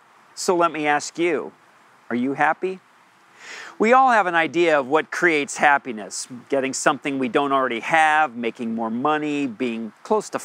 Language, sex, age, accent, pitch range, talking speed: English, male, 40-59, American, 140-170 Hz, 165 wpm